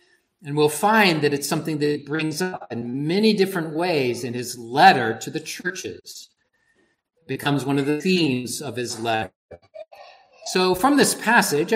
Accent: American